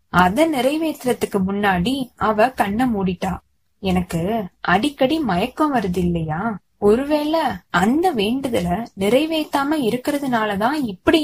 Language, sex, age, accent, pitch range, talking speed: Tamil, female, 20-39, native, 195-275 Hz, 90 wpm